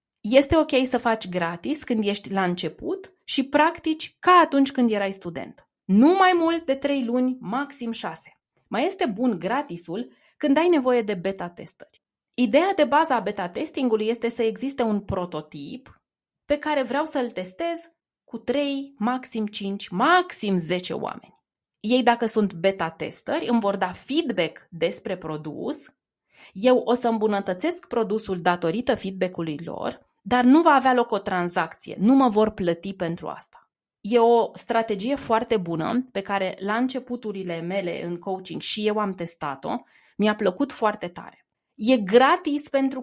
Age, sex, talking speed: 20-39, female, 150 wpm